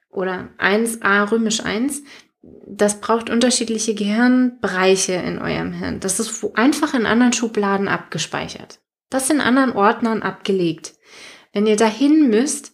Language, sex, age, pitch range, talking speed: German, female, 20-39, 200-245 Hz, 125 wpm